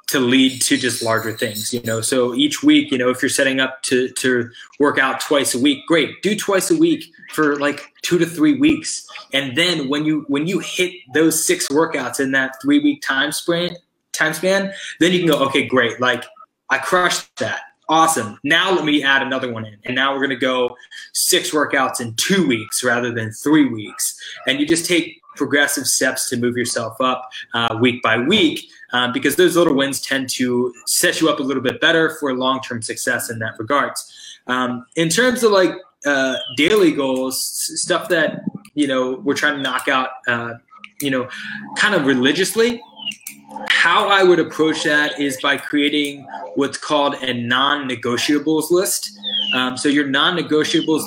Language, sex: English, male